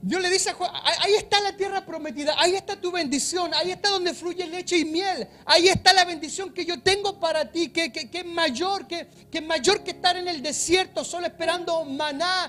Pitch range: 320-375 Hz